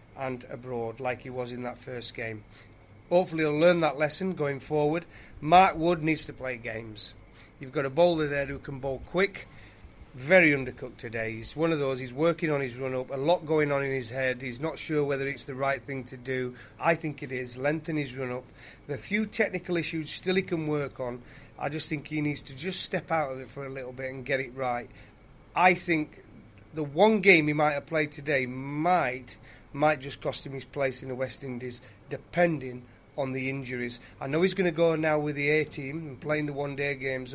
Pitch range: 125-155 Hz